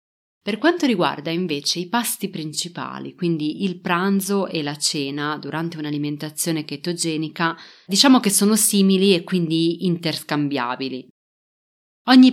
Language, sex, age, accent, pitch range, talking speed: Italian, female, 30-49, native, 155-200 Hz, 115 wpm